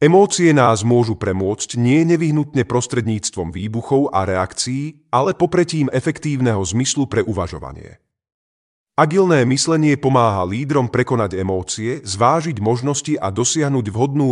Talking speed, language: 115 wpm, Slovak